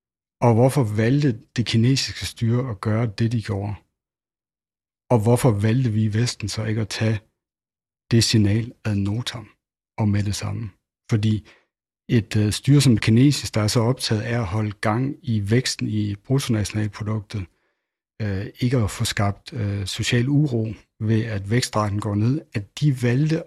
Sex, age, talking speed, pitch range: male, 60-79, 155 wpm, 105-125 Hz